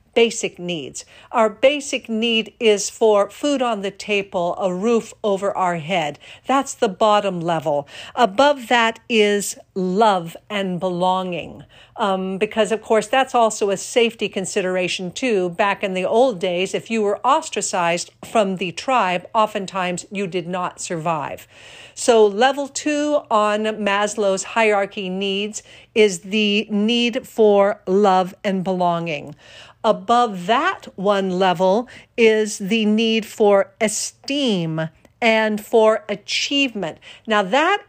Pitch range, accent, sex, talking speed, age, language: 195-240 Hz, American, female, 130 wpm, 50-69, English